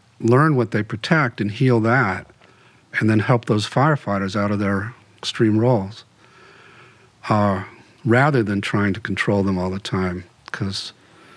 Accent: American